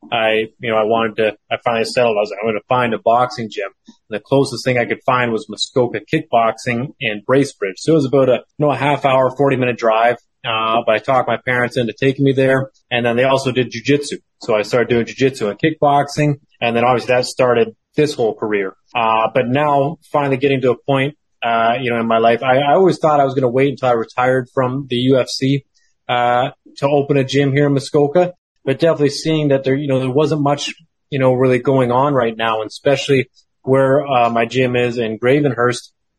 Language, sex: English, male